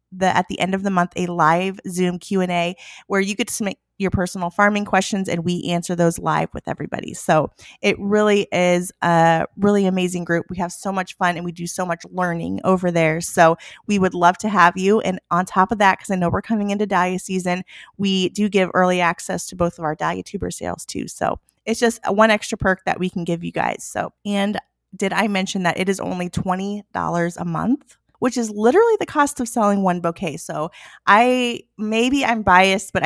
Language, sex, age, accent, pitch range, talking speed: English, female, 20-39, American, 175-200 Hz, 220 wpm